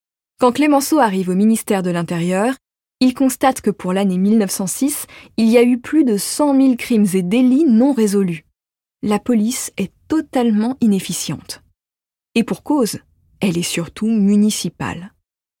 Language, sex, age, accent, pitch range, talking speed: French, female, 20-39, French, 175-250 Hz, 145 wpm